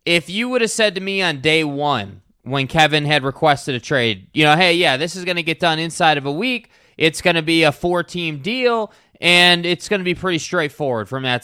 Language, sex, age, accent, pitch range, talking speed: English, male, 20-39, American, 150-200 Hz, 240 wpm